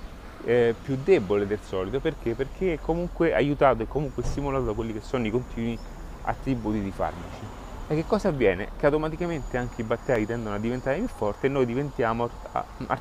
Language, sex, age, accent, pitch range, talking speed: Italian, male, 30-49, native, 105-140 Hz, 180 wpm